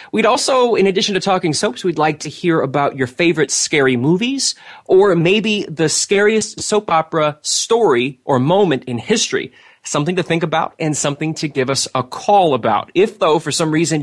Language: English